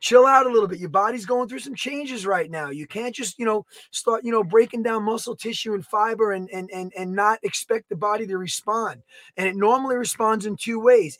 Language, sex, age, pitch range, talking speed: English, male, 20-39, 190-245 Hz, 230 wpm